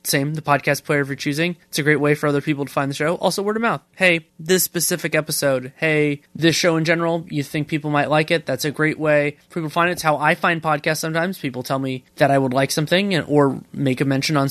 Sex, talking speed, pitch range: male, 275 wpm, 140-165 Hz